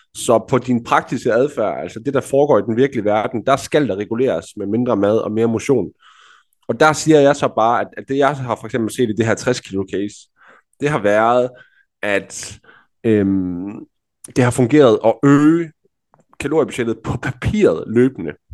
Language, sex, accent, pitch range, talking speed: Danish, male, native, 110-135 Hz, 180 wpm